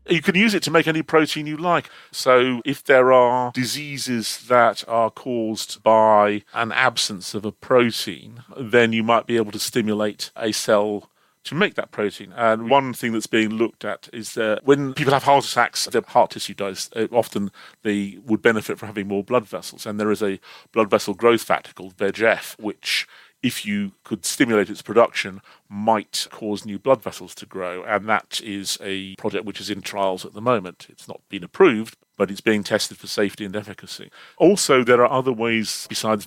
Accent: British